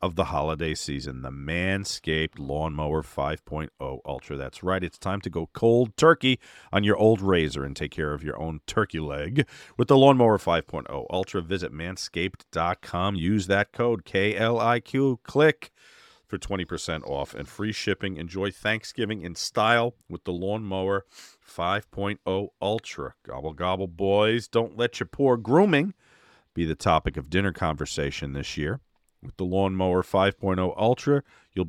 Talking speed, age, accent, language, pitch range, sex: 150 wpm, 40-59, American, English, 85-120 Hz, male